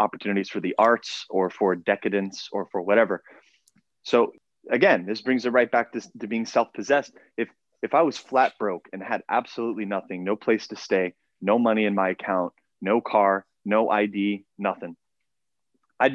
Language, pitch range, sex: English, 100-125 Hz, male